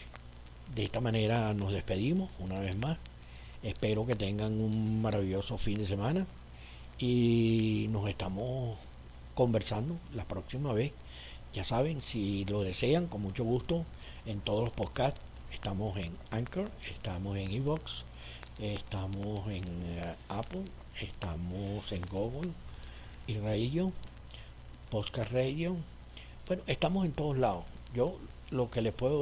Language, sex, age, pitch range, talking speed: Spanish, male, 60-79, 95-125 Hz, 125 wpm